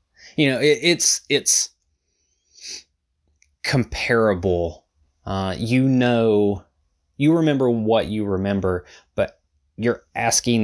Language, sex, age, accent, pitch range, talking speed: English, male, 20-39, American, 80-105 Hz, 90 wpm